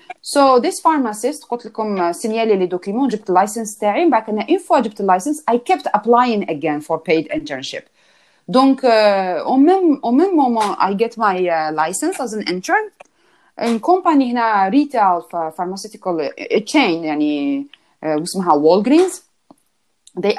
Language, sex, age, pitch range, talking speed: Arabic, female, 30-49, 170-245 Hz, 100 wpm